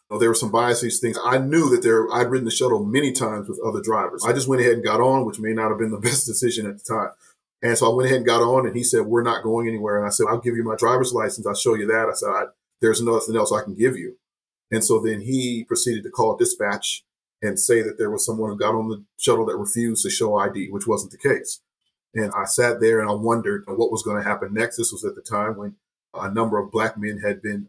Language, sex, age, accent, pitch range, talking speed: English, male, 40-59, American, 110-130 Hz, 275 wpm